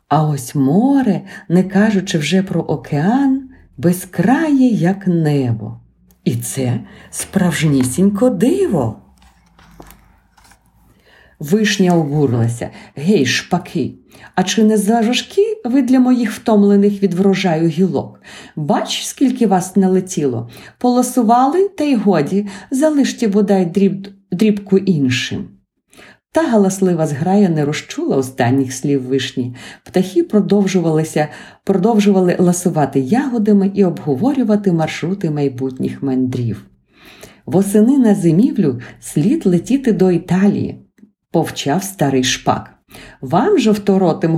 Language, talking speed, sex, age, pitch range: Ukrainian, 95 wpm, female, 50-69, 155-205 Hz